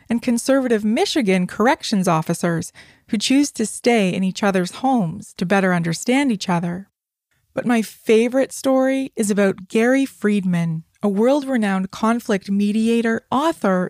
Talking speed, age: 135 wpm, 20-39